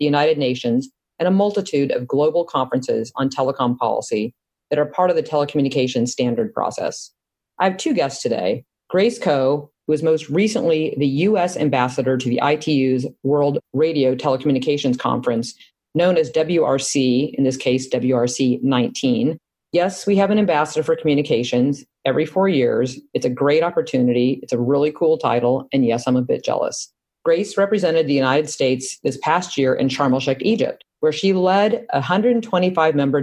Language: English